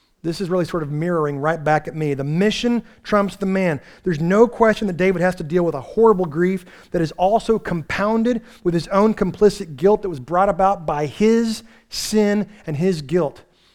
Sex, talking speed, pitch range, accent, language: male, 200 wpm, 160-200 Hz, American, English